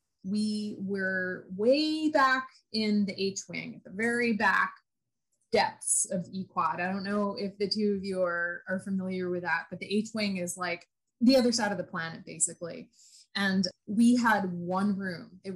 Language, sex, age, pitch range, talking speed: English, female, 20-39, 180-215 Hz, 175 wpm